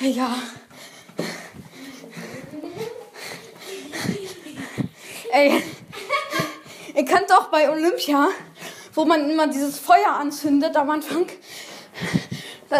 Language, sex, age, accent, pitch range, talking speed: German, female, 20-39, German, 285-340 Hz, 75 wpm